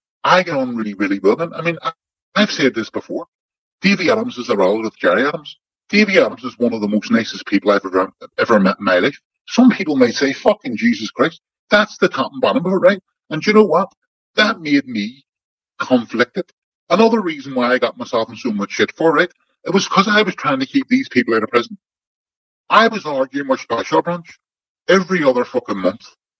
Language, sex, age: English, female, 40-59